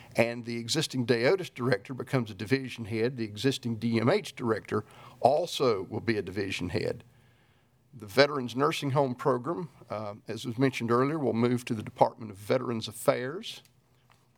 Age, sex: 50-69, male